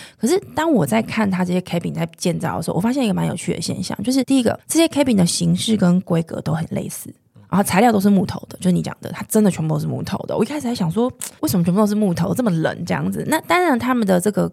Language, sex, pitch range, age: Chinese, female, 175-220 Hz, 20-39